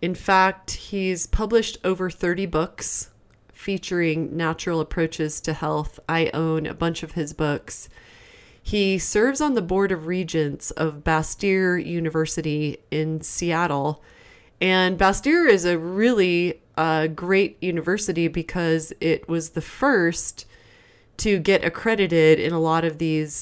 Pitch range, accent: 155-185 Hz, American